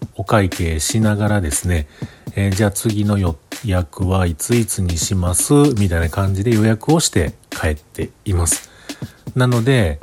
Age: 40-59